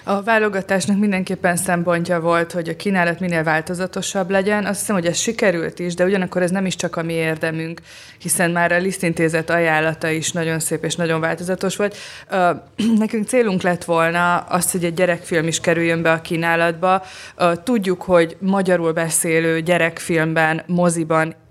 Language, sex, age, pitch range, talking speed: Hungarian, female, 20-39, 165-180 Hz, 160 wpm